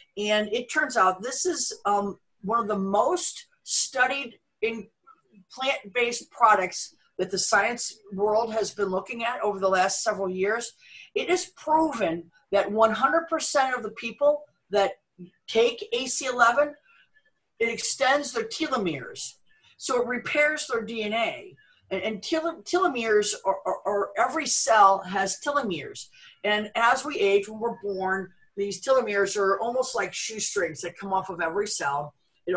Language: English